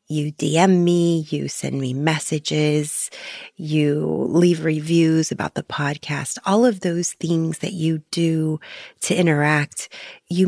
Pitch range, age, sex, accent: 155-185 Hz, 30-49, female, American